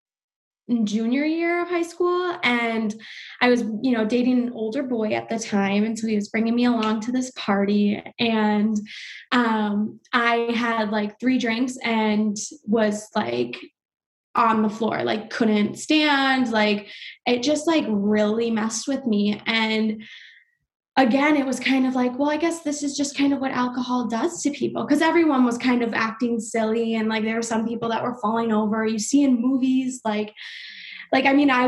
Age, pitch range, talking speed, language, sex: 20-39, 220-260 Hz, 185 wpm, English, female